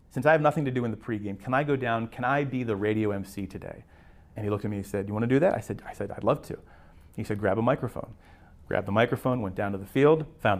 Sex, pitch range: male, 100-130 Hz